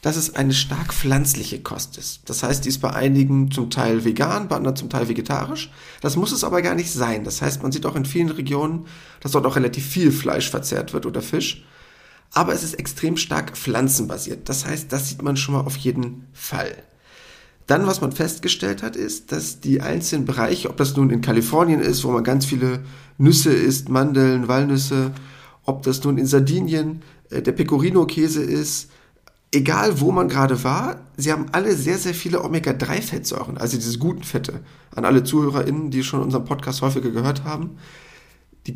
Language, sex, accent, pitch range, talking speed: German, male, German, 130-160 Hz, 190 wpm